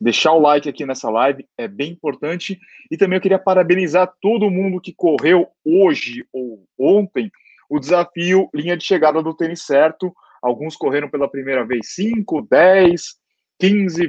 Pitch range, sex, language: 135-185 Hz, male, Portuguese